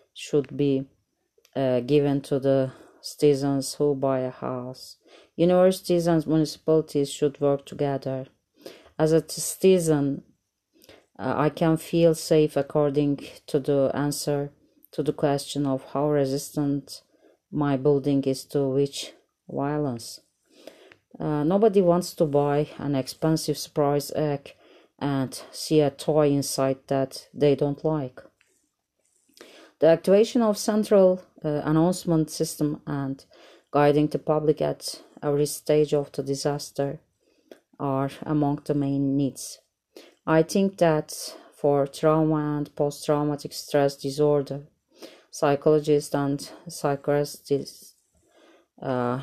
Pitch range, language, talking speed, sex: 140-155 Hz, Turkish, 115 wpm, female